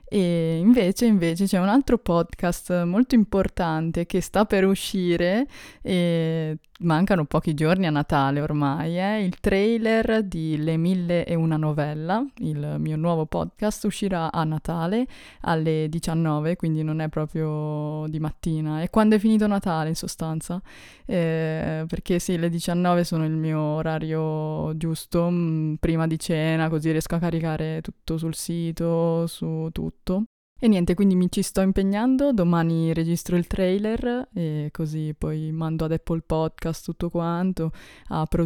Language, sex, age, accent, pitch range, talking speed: Italian, female, 20-39, native, 160-185 Hz, 145 wpm